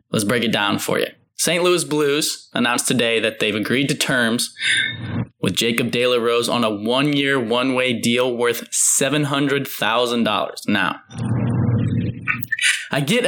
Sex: male